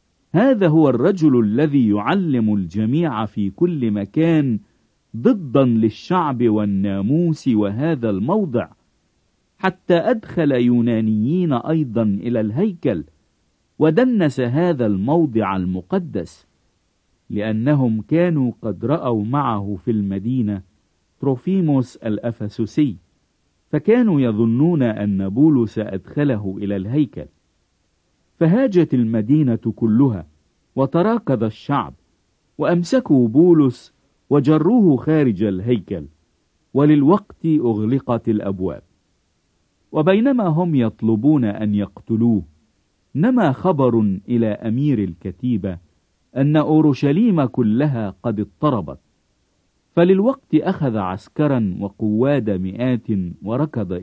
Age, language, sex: 50-69, English, male